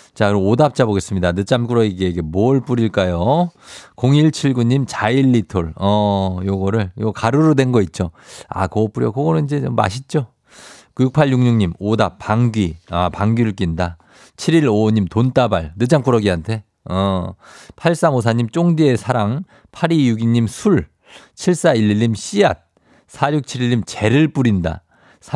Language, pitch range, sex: Korean, 105-140 Hz, male